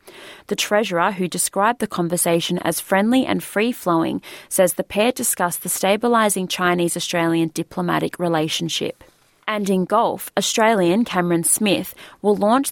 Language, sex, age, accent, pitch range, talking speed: English, female, 20-39, Australian, 175-205 Hz, 125 wpm